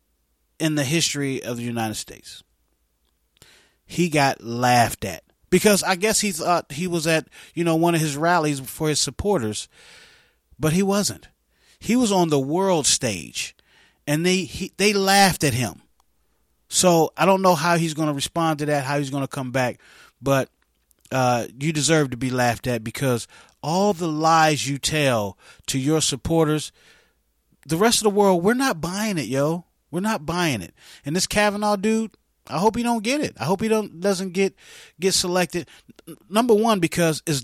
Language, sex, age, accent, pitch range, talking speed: English, male, 30-49, American, 120-175 Hz, 180 wpm